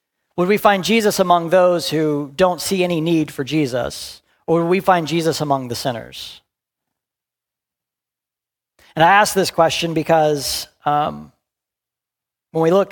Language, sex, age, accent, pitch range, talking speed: English, male, 40-59, American, 130-170 Hz, 145 wpm